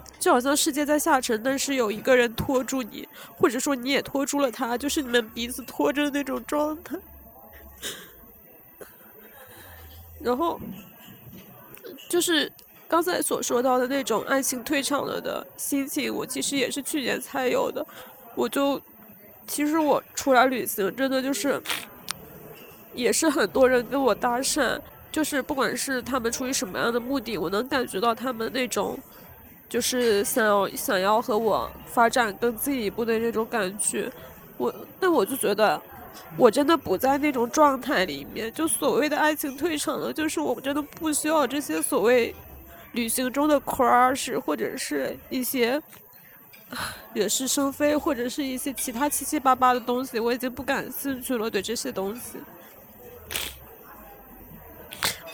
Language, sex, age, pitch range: Chinese, female, 20-39, 240-290 Hz